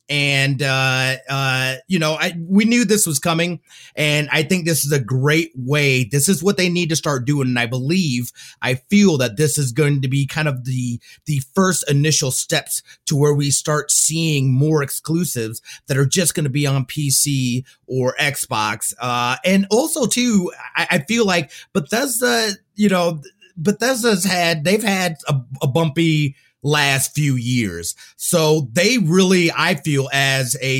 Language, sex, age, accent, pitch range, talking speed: English, male, 30-49, American, 130-165 Hz, 175 wpm